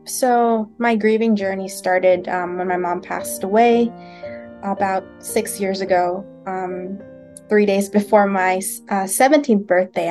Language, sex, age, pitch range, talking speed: English, female, 20-39, 180-210 Hz, 135 wpm